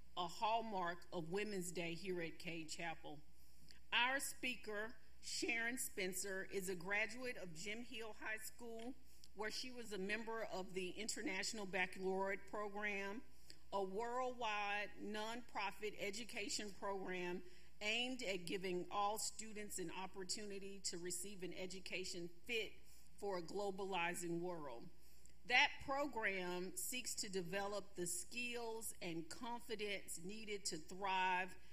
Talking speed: 120 wpm